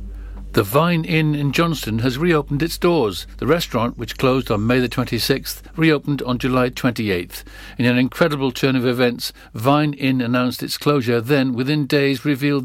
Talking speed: 165 wpm